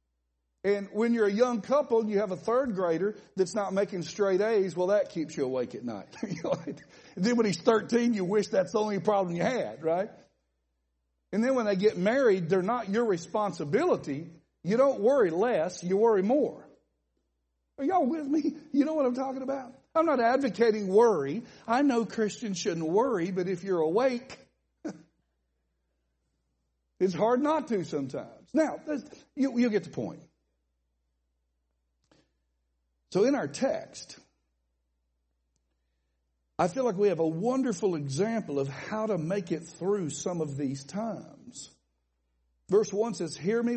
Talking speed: 160 wpm